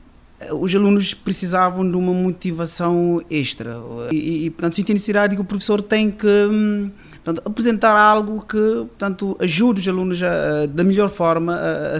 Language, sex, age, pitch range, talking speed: Portuguese, male, 30-49, 135-190 Hz, 150 wpm